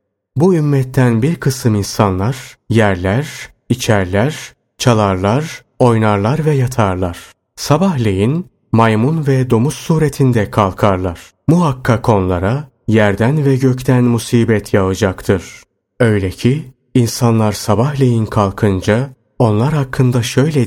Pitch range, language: 100-130 Hz, Turkish